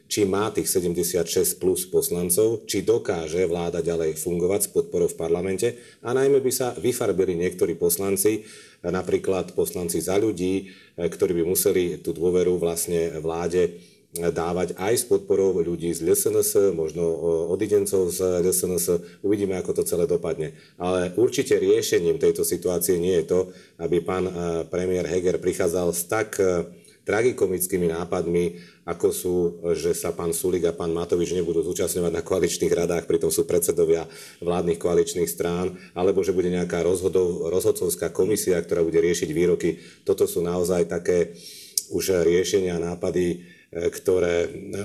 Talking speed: 140 wpm